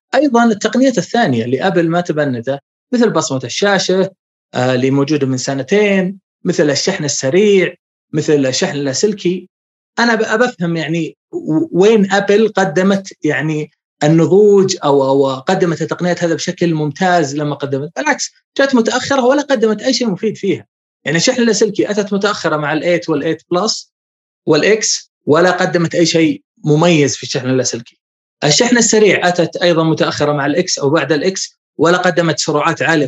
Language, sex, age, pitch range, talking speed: Arabic, male, 20-39, 150-195 Hz, 140 wpm